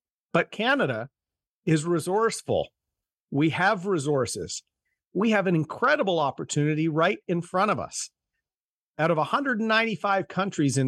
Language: English